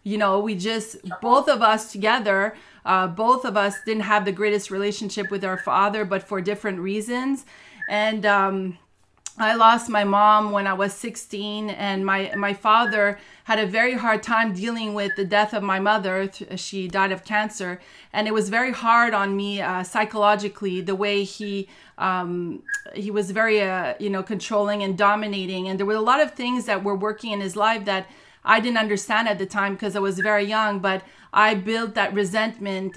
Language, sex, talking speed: English, female, 195 wpm